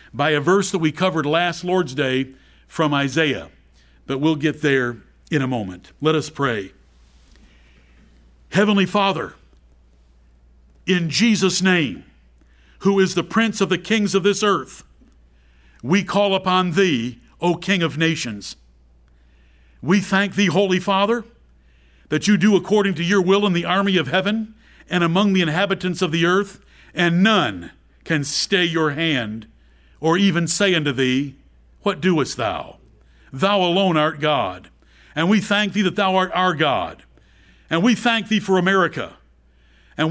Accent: American